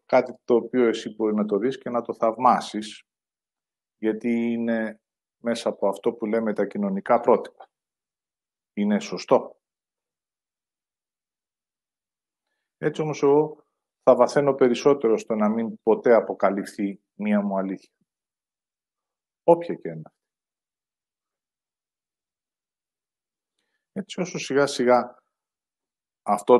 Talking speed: 105 wpm